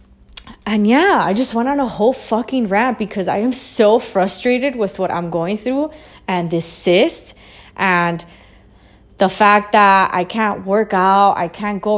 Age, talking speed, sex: 20-39, 170 wpm, female